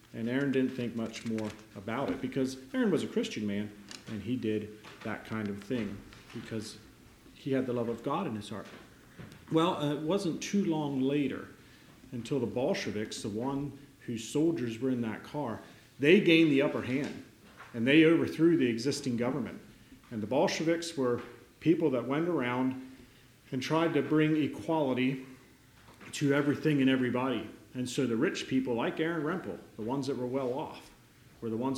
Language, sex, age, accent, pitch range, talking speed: English, male, 40-59, American, 115-145 Hz, 180 wpm